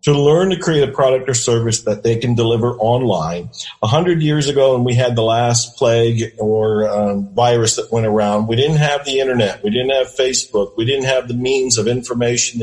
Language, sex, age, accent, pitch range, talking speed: English, male, 50-69, American, 115-165 Hz, 215 wpm